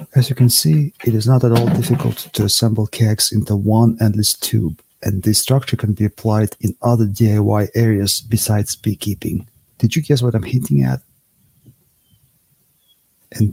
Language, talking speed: English, 165 wpm